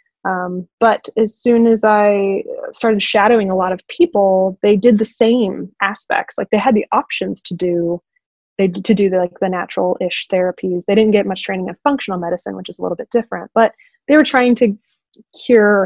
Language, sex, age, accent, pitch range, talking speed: English, female, 20-39, American, 185-220 Hz, 200 wpm